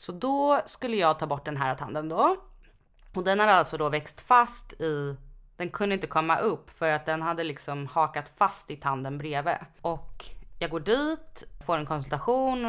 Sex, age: female, 20-39